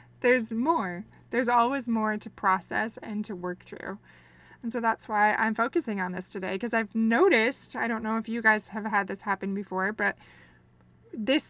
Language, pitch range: English, 190-225 Hz